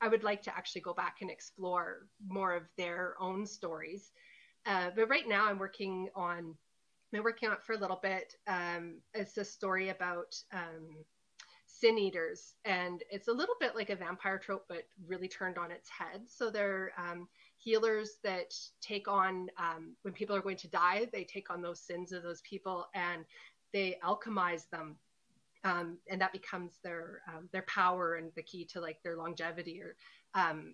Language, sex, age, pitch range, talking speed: English, female, 30-49, 170-195 Hz, 185 wpm